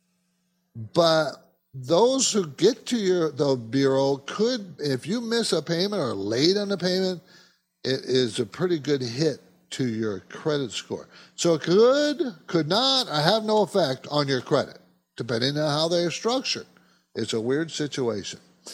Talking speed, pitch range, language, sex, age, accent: 165 wpm, 130-180 Hz, English, male, 60-79, American